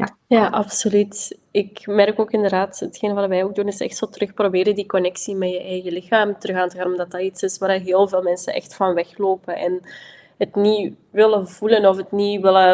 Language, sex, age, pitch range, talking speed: Dutch, female, 20-39, 180-200 Hz, 210 wpm